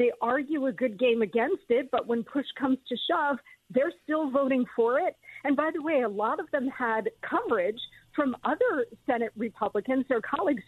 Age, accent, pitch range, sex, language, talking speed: 50-69, American, 225-285 Hz, female, English, 190 wpm